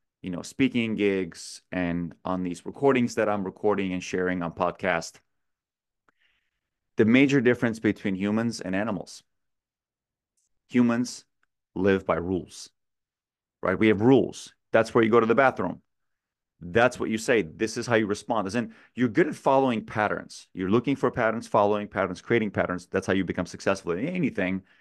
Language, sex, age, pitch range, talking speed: English, male, 30-49, 95-120 Hz, 165 wpm